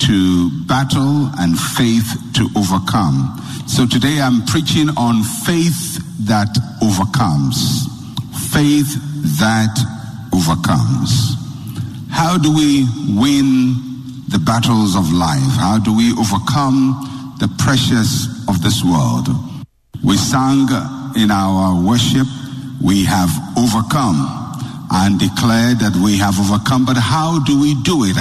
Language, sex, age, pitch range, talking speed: English, male, 60-79, 105-135 Hz, 115 wpm